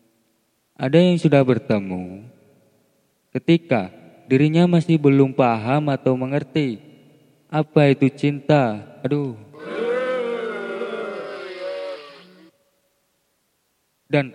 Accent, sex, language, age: native, male, Indonesian, 20-39